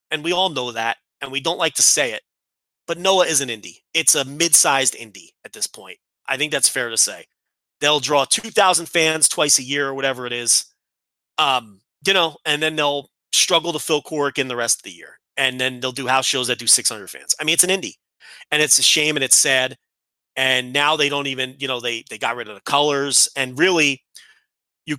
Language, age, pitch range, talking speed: English, 30-49, 120-150 Hz, 230 wpm